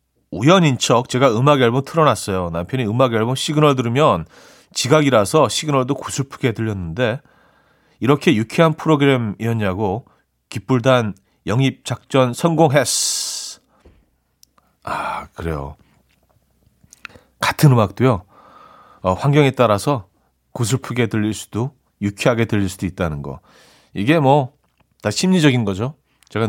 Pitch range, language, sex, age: 90-135 Hz, Korean, male, 40-59